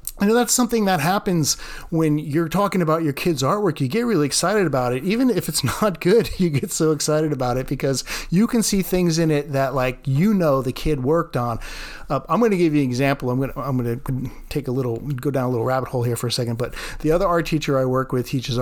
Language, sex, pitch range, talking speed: English, male, 130-170 Hz, 260 wpm